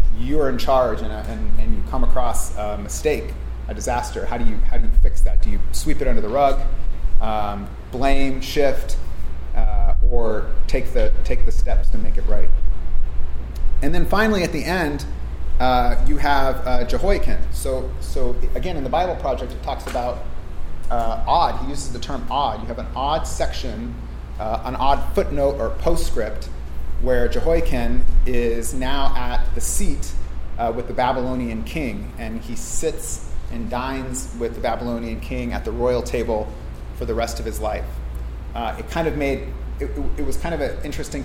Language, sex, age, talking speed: English, male, 30-49, 180 wpm